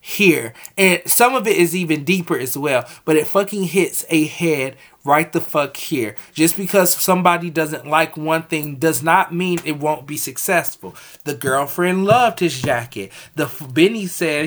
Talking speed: 180 wpm